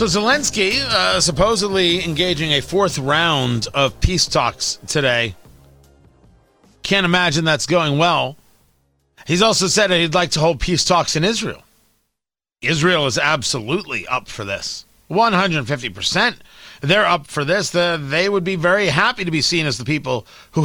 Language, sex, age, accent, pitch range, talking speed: English, male, 40-59, American, 140-200 Hz, 150 wpm